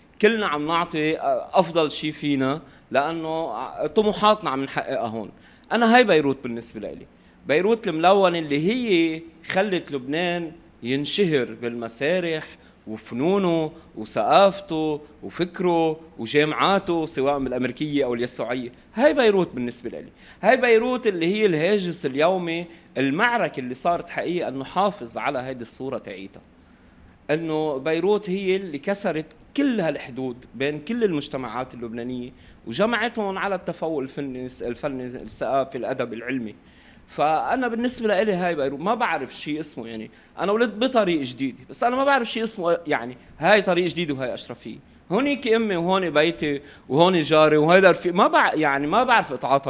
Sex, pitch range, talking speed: male, 135-195 Hz, 140 wpm